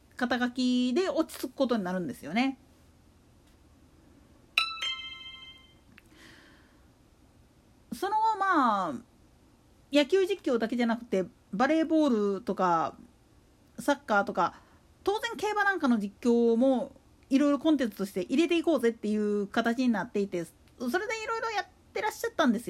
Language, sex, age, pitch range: Japanese, female, 40-59, 235-325 Hz